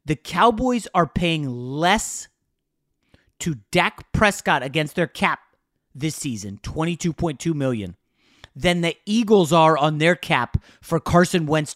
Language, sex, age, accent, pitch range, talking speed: English, male, 30-49, American, 135-185 Hz, 130 wpm